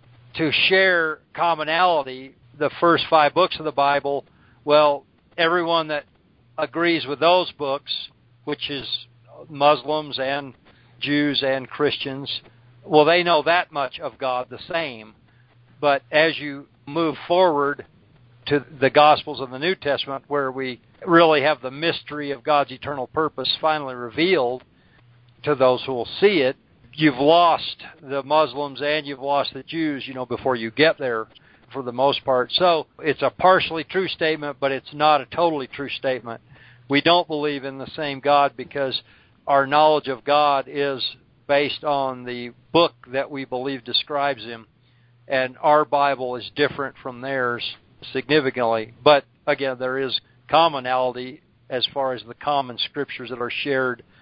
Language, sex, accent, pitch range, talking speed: English, male, American, 125-150 Hz, 155 wpm